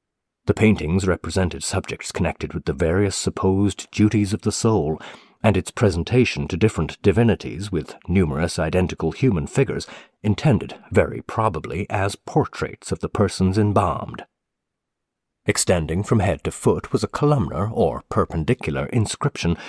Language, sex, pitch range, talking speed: English, male, 85-110 Hz, 135 wpm